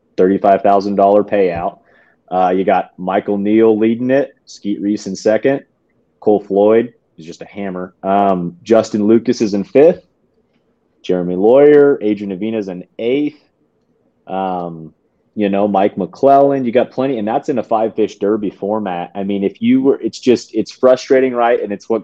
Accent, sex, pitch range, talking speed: American, male, 95-110 Hz, 160 wpm